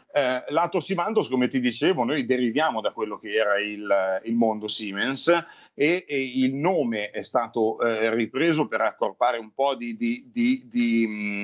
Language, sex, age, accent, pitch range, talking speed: Italian, male, 40-59, native, 110-145 Hz, 145 wpm